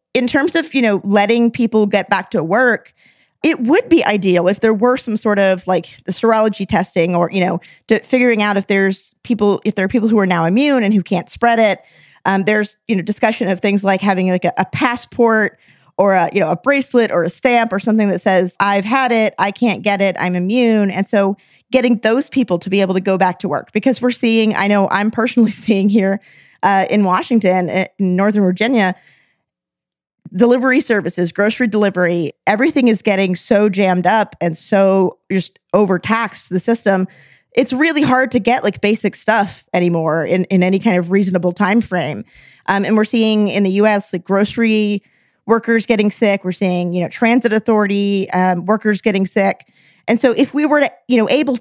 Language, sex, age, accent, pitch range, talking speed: English, female, 20-39, American, 190-235 Hz, 200 wpm